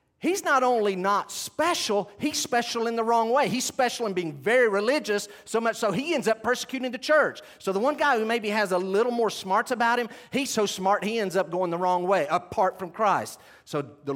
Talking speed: 230 wpm